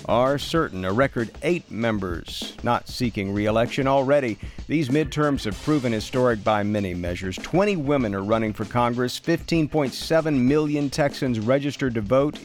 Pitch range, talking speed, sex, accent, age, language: 110-140 Hz, 145 wpm, male, American, 50-69, English